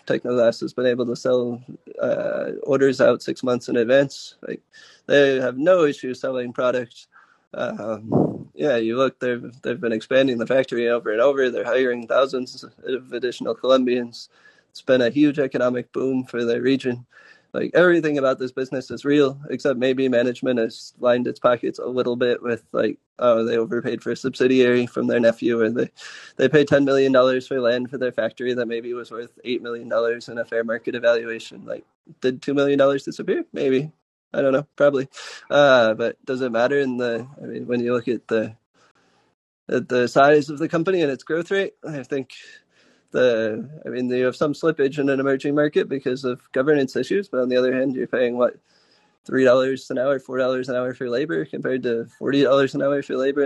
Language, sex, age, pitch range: English, male, 20-39, 125-140 Hz